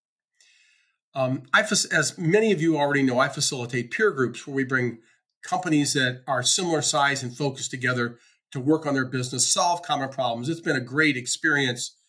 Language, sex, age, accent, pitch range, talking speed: English, male, 50-69, American, 130-175 Hz, 175 wpm